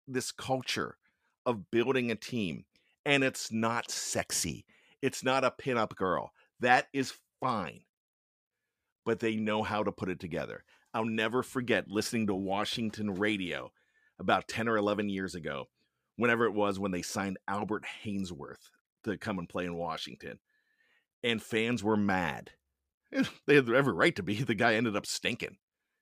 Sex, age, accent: male, 40-59, American